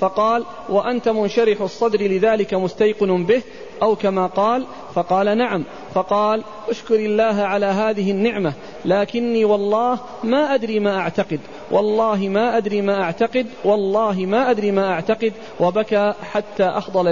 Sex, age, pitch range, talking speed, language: male, 40-59, 200-230 Hz, 130 wpm, Arabic